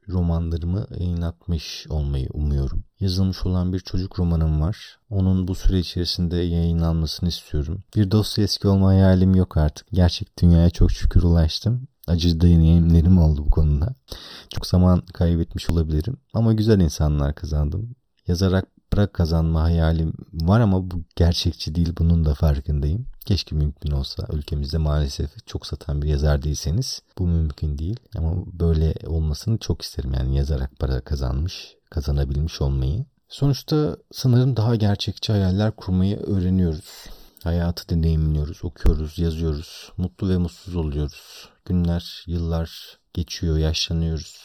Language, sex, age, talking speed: Turkish, male, 40-59, 130 wpm